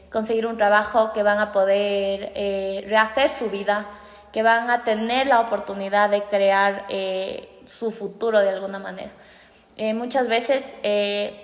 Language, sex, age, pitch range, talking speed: Spanish, female, 20-39, 215-265 Hz, 150 wpm